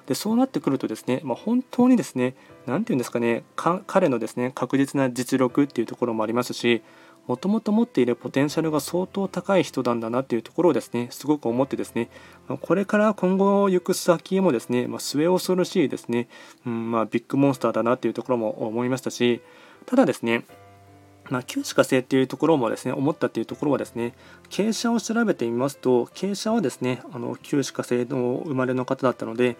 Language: Japanese